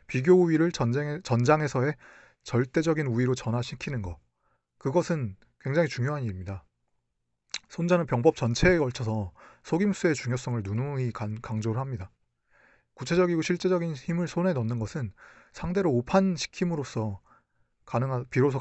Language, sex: Korean, male